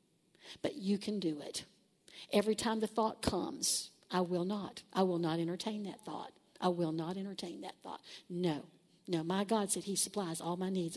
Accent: American